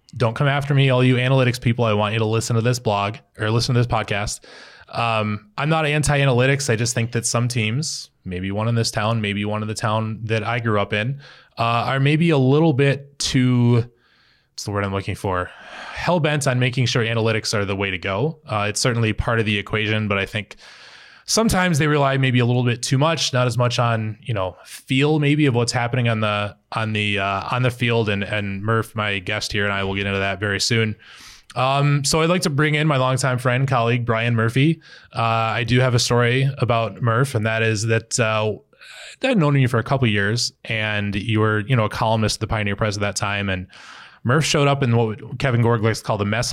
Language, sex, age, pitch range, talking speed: English, male, 20-39, 105-130 Hz, 235 wpm